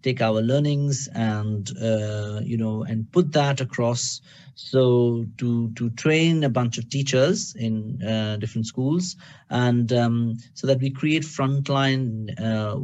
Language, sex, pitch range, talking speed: English, male, 115-140 Hz, 145 wpm